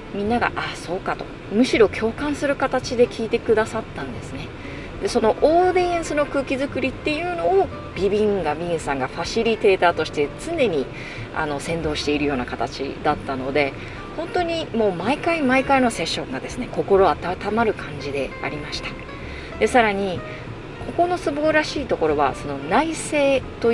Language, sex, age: Japanese, female, 30-49